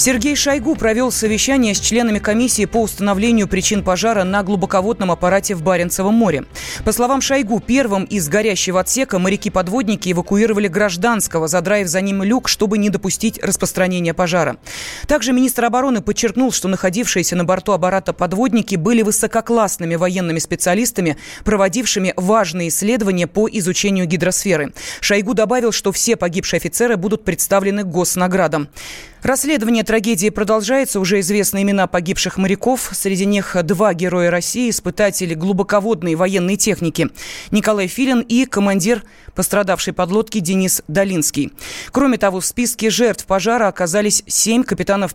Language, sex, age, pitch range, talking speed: Russian, female, 20-39, 185-225 Hz, 130 wpm